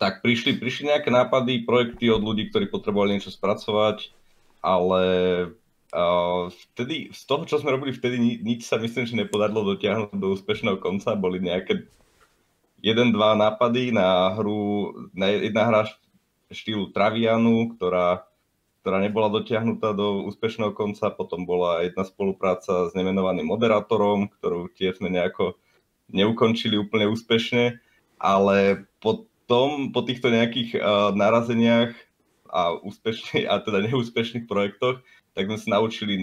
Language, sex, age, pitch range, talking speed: Slovak, male, 30-49, 100-120 Hz, 130 wpm